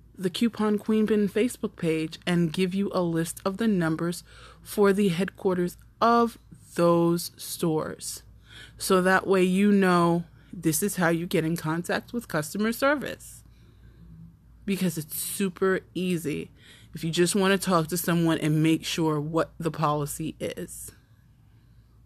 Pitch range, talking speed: 155-195 Hz, 145 wpm